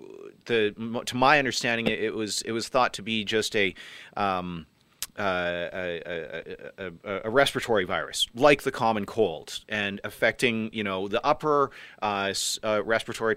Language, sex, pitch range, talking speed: English, male, 100-135 Hz, 155 wpm